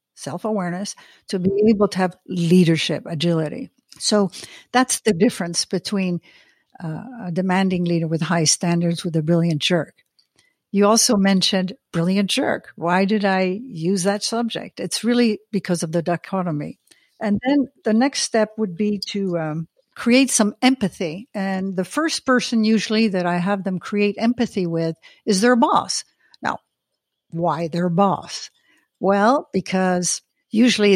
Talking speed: 145 wpm